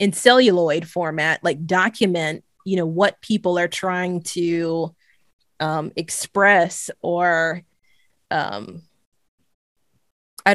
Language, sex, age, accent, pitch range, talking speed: English, female, 20-39, American, 170-230 Hz, 95 wpm